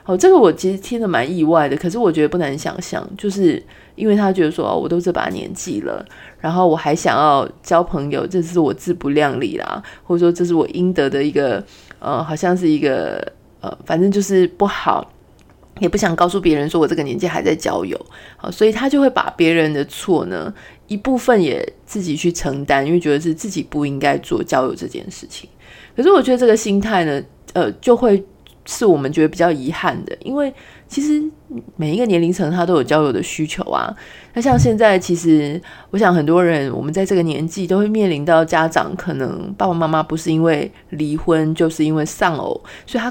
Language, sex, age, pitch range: Chinese, female, 30-49, 155-205 Hz